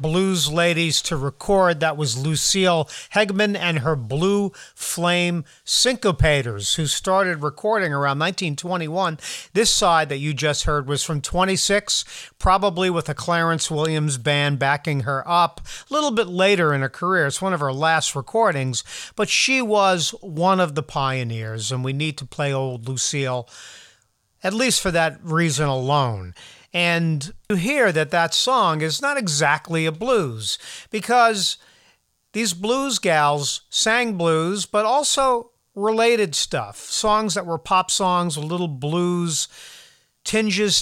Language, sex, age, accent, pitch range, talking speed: English, male, 50-69, American, 145-200 Hz, 145 wpm